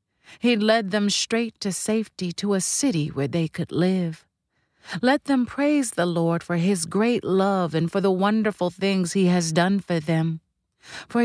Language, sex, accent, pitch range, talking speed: English, female, American, 165-210 Hz, 175 wpm